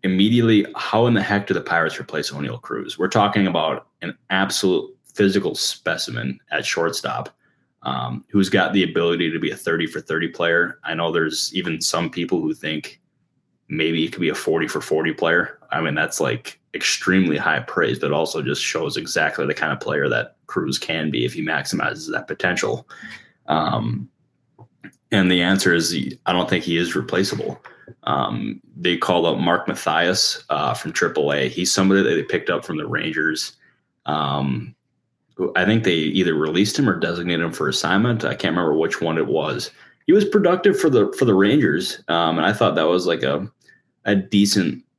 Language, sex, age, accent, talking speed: English, male, 20-39, American, 190 wpm